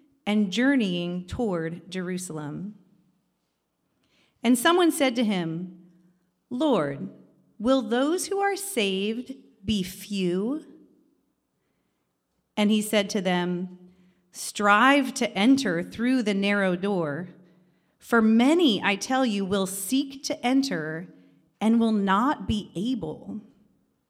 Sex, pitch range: female, 180-250 Hz